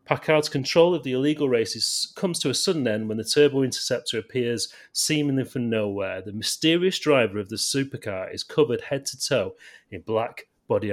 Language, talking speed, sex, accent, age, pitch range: English, 180 wpm, male, British, 30-49, 105-130 Hz